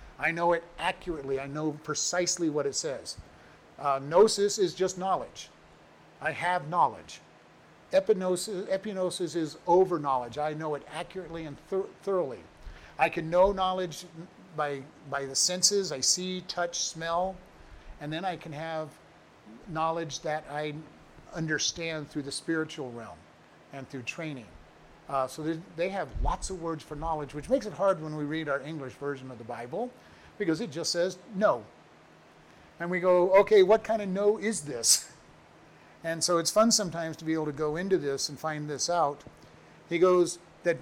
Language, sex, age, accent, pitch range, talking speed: English, male, 50-69, American, 145-185 Hz, 165 wpm